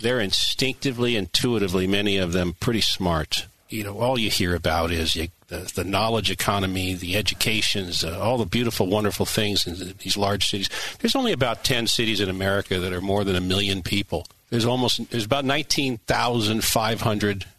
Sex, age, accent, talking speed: male, 50-69, American, 165 wpm